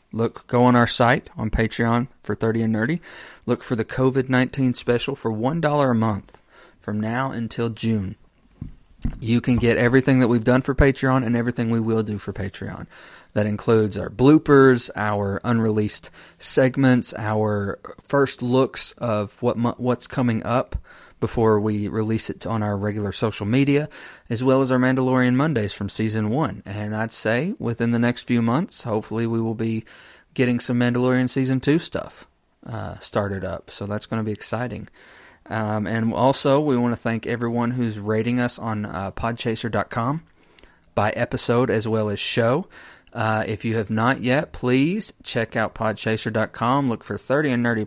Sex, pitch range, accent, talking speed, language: male, 110-130 Hz, American, 170 wpm, English